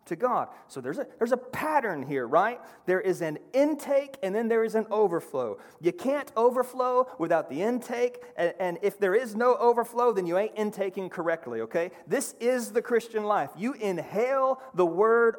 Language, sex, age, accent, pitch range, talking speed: English, male, 30-49, American, 195-255 Hz, 185 wpm